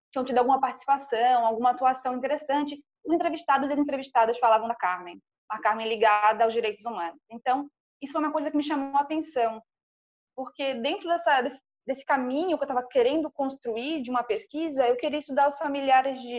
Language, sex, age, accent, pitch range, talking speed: Portuguese, female, 20-39, Brazilian, 245-300 Hz, 185 wpm